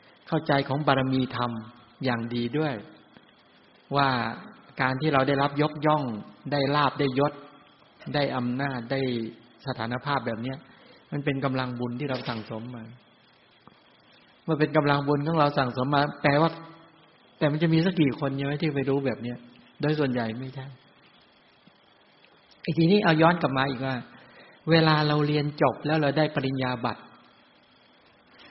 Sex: male